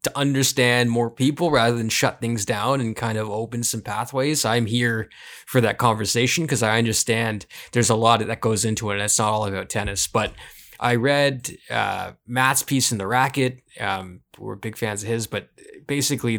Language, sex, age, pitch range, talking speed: English, male, 20-39, 110-135 Hz, 195 wpm